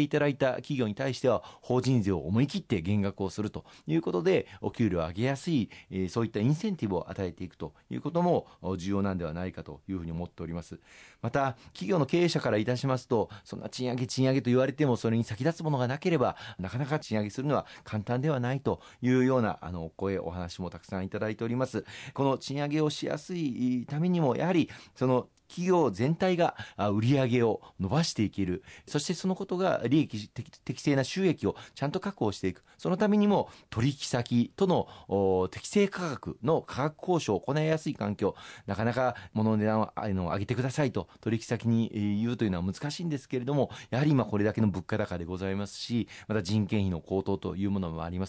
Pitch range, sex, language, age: 100-140 Hz, male, Japanese, 40-59